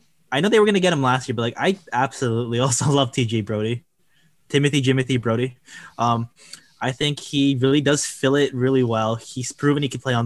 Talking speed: 210 wpm